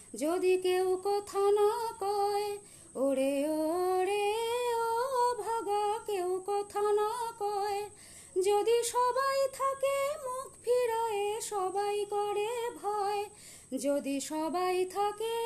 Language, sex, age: Bengali, female, 30-49